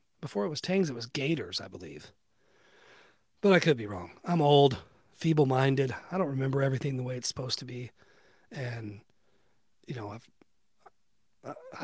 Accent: American